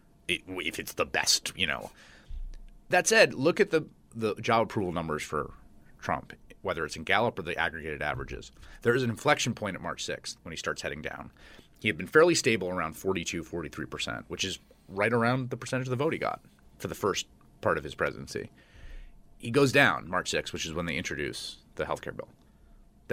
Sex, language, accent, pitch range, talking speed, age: male, English, American, 85-120 Hz, 200 wpm, 30-49